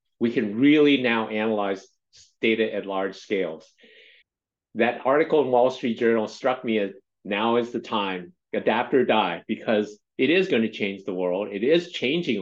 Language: English